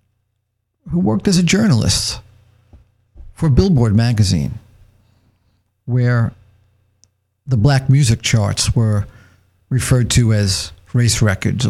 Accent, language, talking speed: American, English, 95 wpm